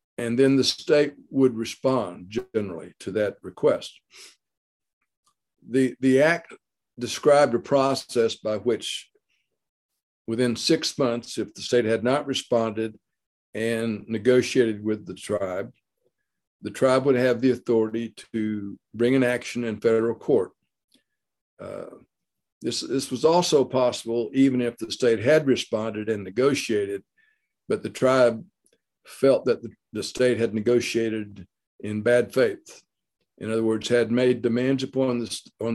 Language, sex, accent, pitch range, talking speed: English, male, American, 110-130 Hz, 130 wpm